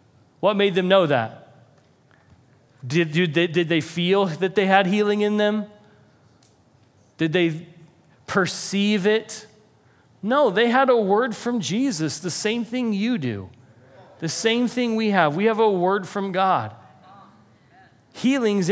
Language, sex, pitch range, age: English, male, 130-200 Hz, 40-59